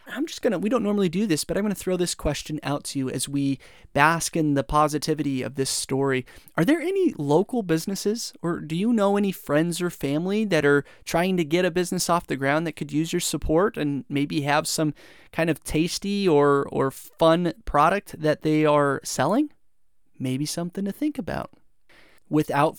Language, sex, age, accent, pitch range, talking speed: English, male, 30-49, American, 145-185 Hz, 205 wpm